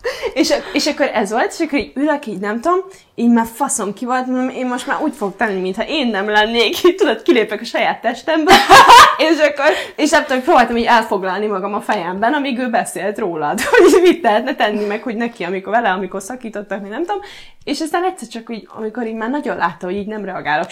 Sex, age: female, 20-39